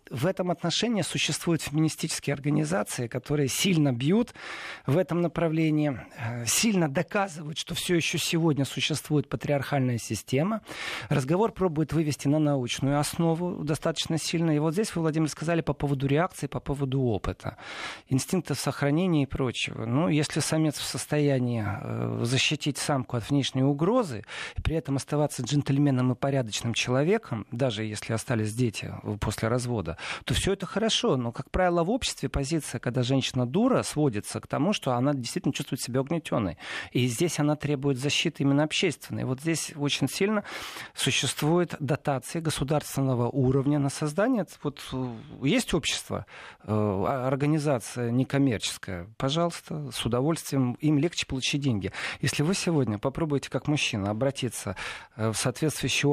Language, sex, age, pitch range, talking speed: Russian, male, 40-59, 125-160 Hz, 135 wpm